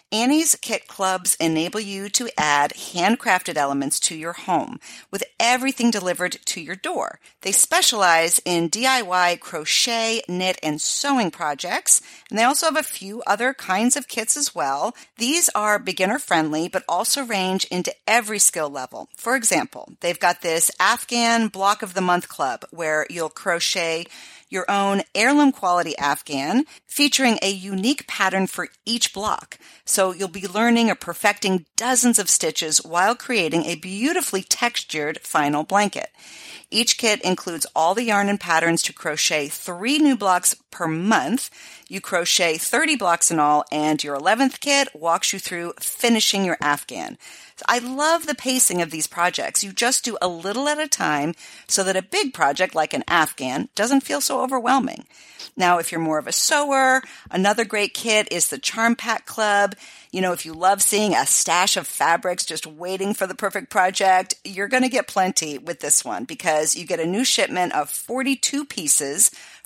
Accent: American